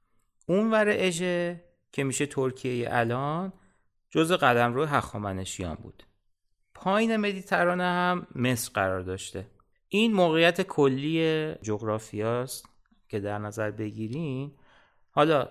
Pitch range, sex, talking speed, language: 110-170 Hz, male, 100 wpm, Persian